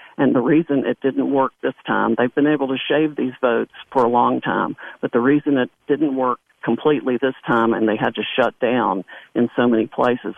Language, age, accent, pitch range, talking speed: English, 50-69, American, 115-140 Hz, 220 wpm